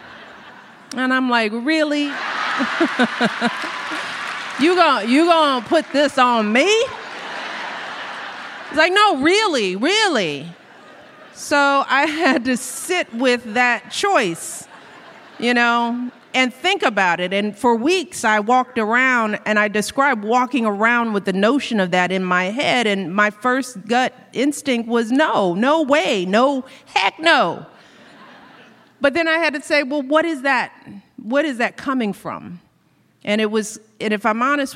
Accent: American